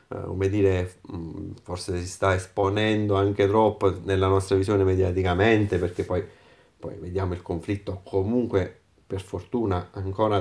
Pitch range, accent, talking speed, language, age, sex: 95-110 Hz, native, 125 wpm, Italian, 30-49, male